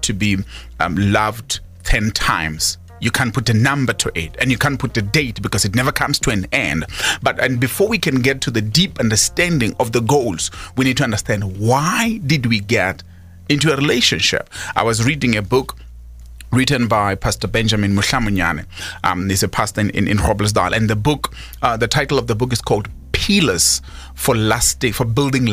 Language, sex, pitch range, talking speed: English, male, 105-135 Hz, 195 wpm